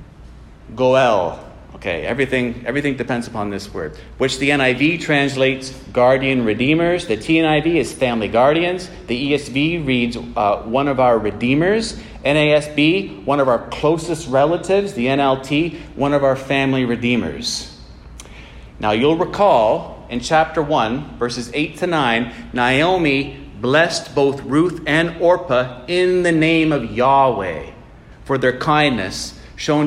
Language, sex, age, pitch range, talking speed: English, male, 40-59, 125-165 Hz, 130 wpm